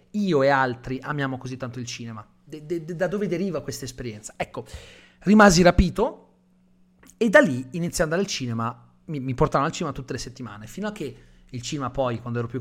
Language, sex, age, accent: Italian, male, 30-49, native